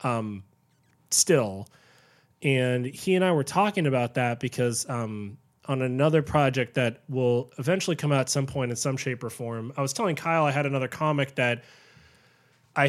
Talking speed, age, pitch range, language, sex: 175 wpm, 20-39, 125-165 Hz, English, male